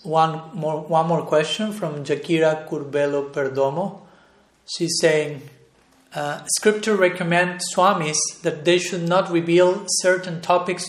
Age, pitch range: 40-59, 155-180 Hz